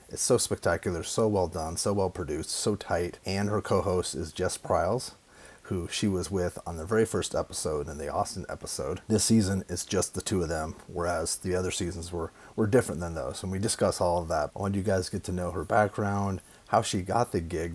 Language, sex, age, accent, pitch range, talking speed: English, male, 30-49, American, 90-105 Hz, 225 wpm